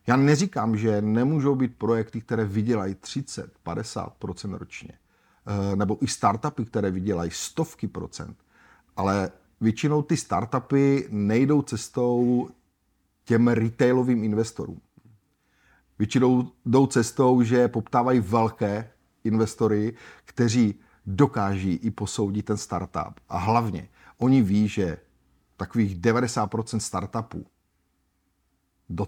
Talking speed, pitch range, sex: 100 wpm, 105-125 Hz, male